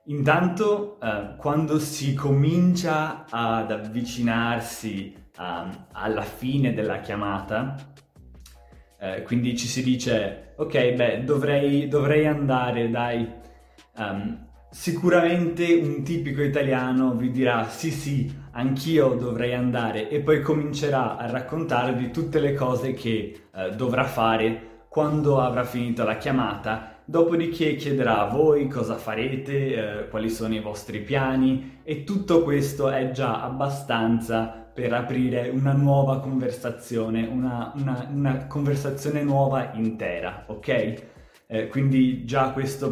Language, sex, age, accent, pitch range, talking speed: Italian, male, 20-39, native, 110-140 Hz, 120 wpm